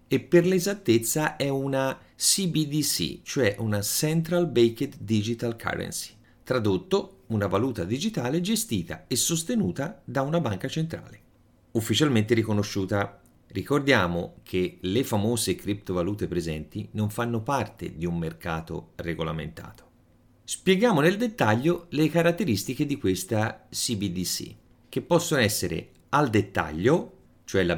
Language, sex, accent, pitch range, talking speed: Italian, male, native, 95-145 Hz, 115 wpm